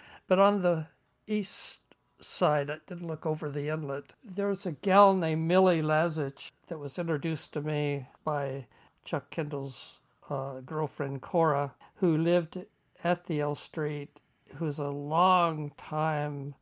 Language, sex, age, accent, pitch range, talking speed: English, male, 60-79, American, 145-180 Hz, 140 wpm